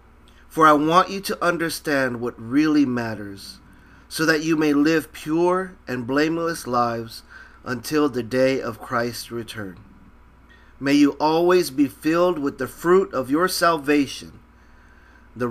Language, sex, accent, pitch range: Japanese, male, American, 115-150 Hz